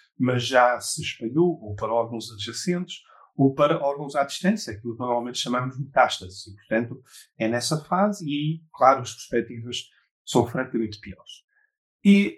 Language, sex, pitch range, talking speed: Portuguese, male, 130-165 Hz, 150 wpm